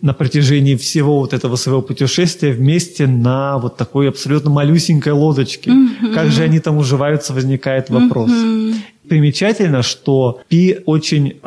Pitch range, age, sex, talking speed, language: 135-160 Hz, 30-49, male, 130 wpm, Russian